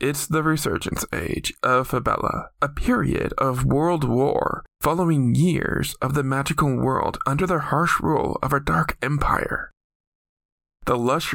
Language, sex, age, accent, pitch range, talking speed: English, male, 20-39, American, 130-155 Hz, 145 wpm